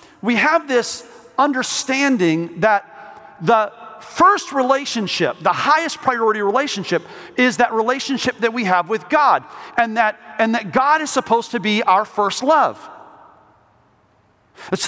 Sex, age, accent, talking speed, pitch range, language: male, 40-59, American, 135 wpm, 220-285 Hz, English